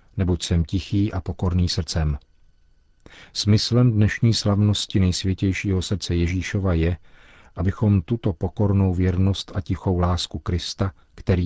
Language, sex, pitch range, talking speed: Czech, male, 85-95 Hz, 115 wpm